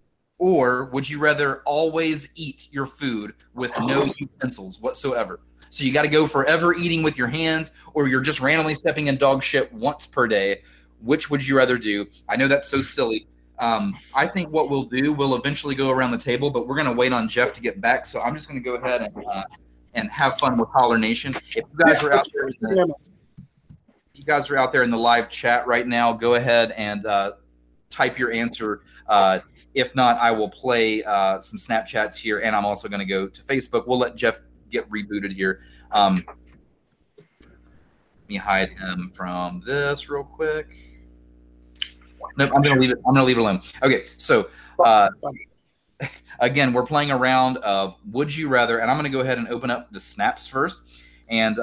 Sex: male